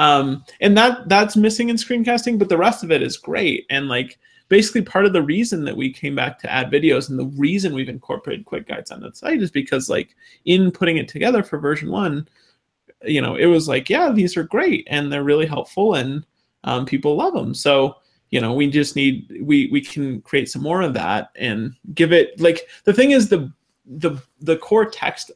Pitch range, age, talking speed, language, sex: 140-200 Hz, 30-49, 220 wpm, English, male